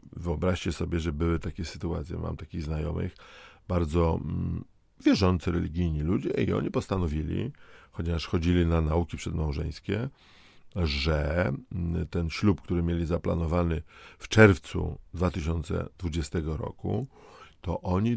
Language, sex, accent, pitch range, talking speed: Polish, male, native, 85-120 Hz, 110 wpm